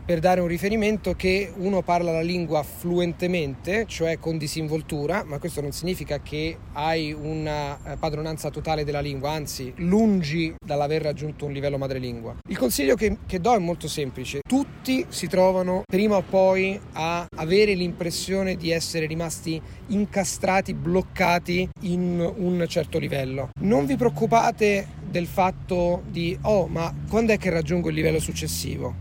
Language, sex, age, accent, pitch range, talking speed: Italian, male, 40-59, native, 155-195 Hz, 150 wpm